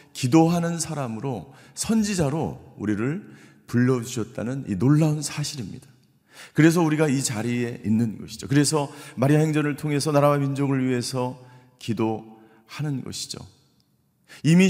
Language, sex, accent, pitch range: Korean, male, native, 110-150 Hz